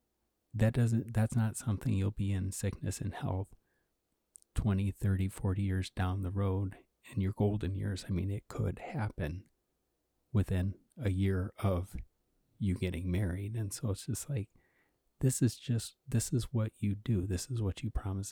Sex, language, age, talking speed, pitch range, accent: male, English, 30-49, 170 wpm, 95-115 Hz, American